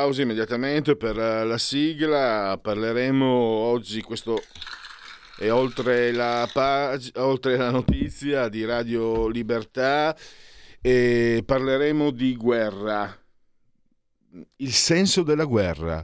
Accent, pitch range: native, 110-145 Hz